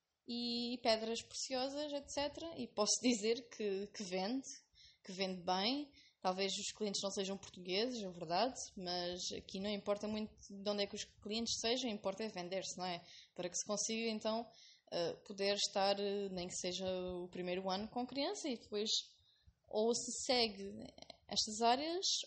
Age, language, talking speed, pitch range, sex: 10-29, English, 160 wpm, 200-265 Hz, female